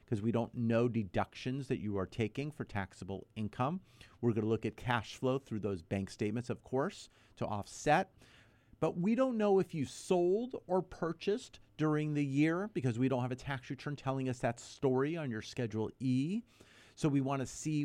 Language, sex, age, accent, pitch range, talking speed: English, male, 40-59, American, 105-140 Hz, 200 wpm